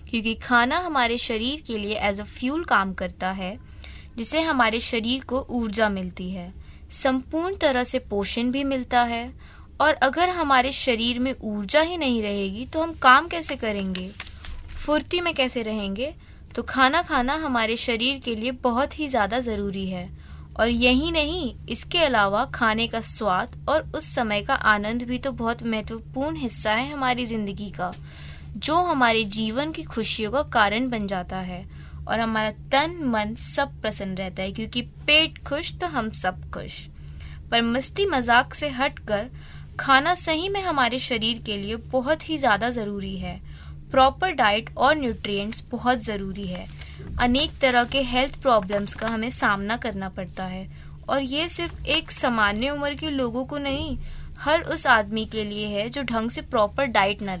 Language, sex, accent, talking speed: Hindi, female, native, 165 wpm